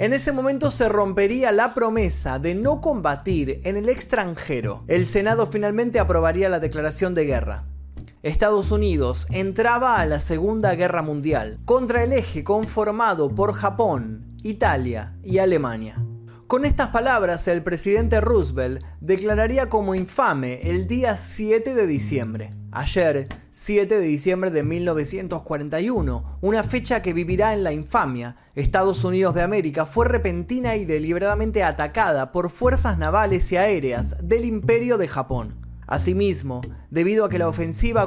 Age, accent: 20-39, Argentinian